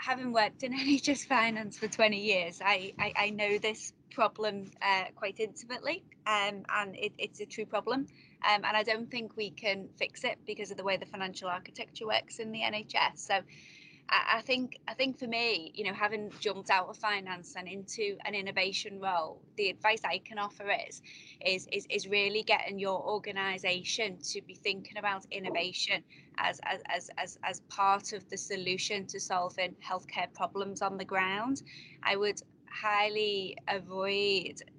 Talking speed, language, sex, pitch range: 175 wpm, English, female, 180-210 Hz